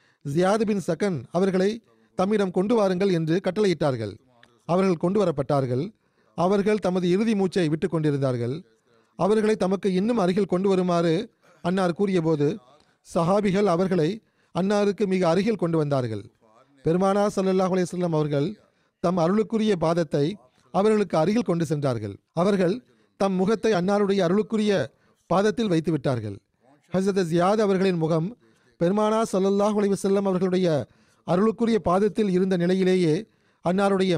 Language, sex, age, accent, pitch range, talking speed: Tamil, male, 40-59, native, 160-200 Hz, 105 wpm